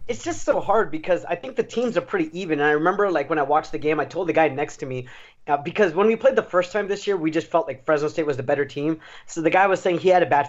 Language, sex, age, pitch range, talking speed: English, male, 20-39, 145-180 Hz, 325 wpm